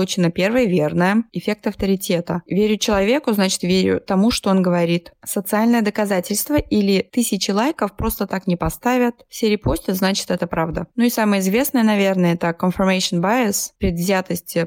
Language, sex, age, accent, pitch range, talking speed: Russian, female, 20-39, native, 175-215 Hz, 145 wpm